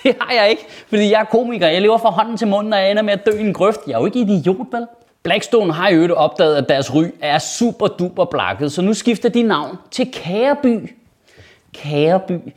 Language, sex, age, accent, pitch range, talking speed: Danish, male, 30-49, native, 155-220 Hz, 235 wpm